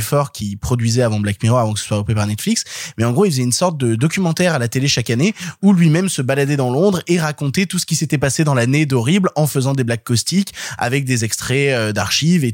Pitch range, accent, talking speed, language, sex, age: 135-175 Hz, French, 255 wpm, French, male, 20-39